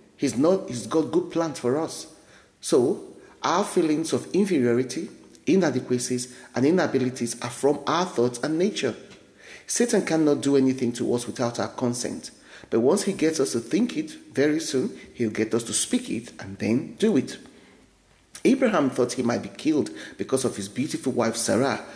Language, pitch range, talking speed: English, 115-150 Hz, 170 wpm